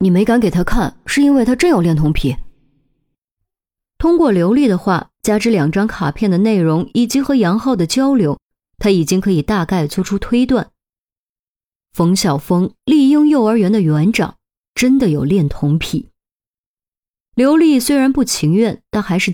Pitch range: 160-230 Hz